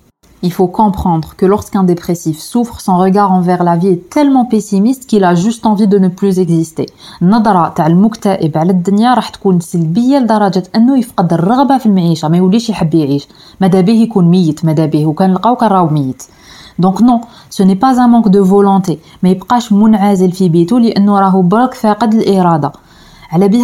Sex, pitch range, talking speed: female, 175-225 Hz, 90 wpm